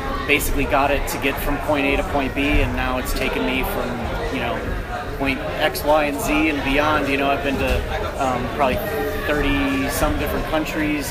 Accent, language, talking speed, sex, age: American, English, 200 wpm, male, 30-49